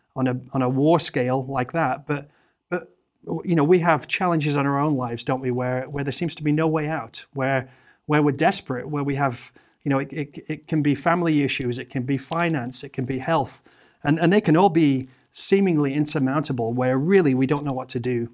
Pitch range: 130-165 Hz